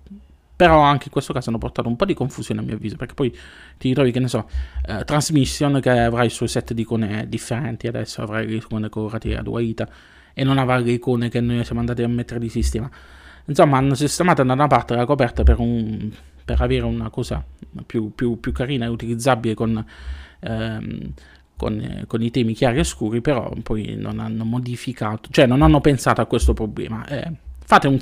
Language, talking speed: Italian, 210 wpm